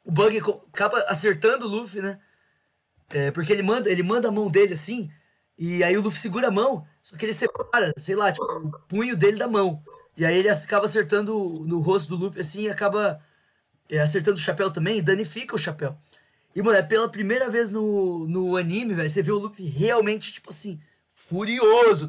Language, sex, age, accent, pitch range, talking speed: Portuguese, male, 20-39, Brazilian, 155-215 Hz, 195 wpm